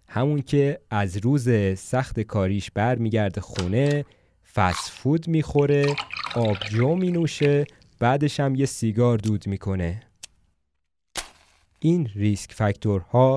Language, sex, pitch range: Persian, male, 100-130 Hz